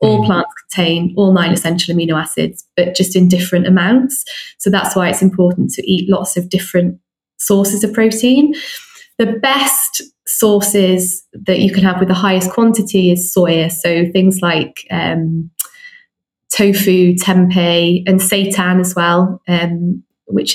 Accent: British